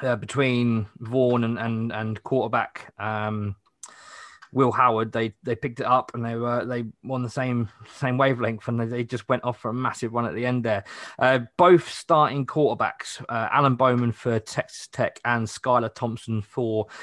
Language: English